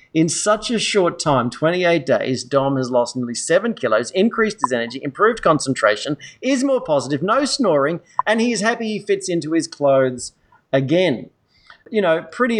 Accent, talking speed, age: Australian, 170 wpm, 40-59